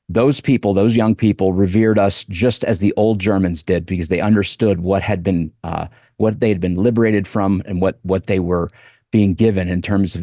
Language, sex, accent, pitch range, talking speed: English, male, American, 90-110 Hz, 210 wpm